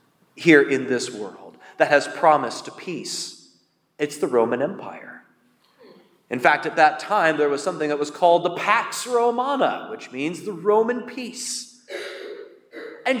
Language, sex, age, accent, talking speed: English, male, 30-49, American, 145 wpm